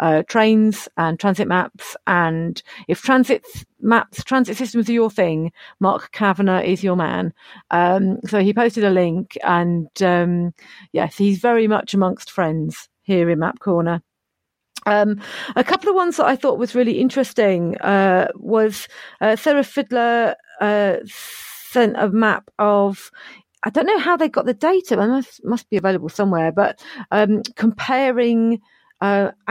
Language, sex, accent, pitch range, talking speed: English, female, British, 185-230 Hz, 155 wpm